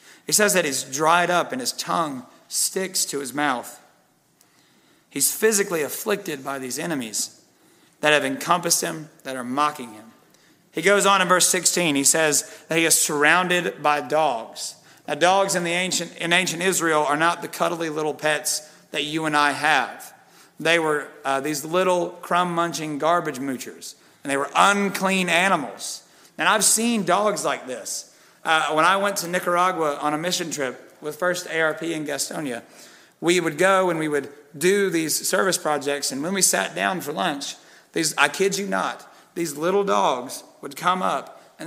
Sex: male